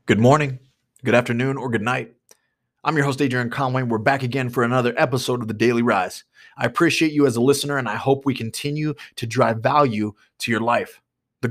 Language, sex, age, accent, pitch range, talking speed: English, male, 30-49, American, 125-160 Hz, 210 wpm